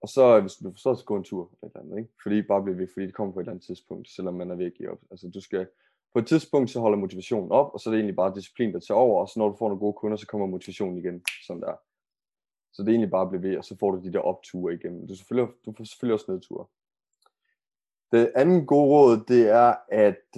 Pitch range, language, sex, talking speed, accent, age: 95-115 Hz, Danish, male, 285 wpm, native, 20-39